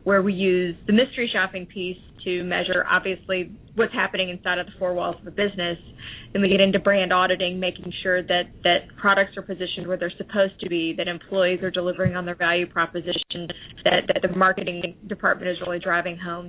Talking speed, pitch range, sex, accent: 200 wpm, 175-190 Hz, female, American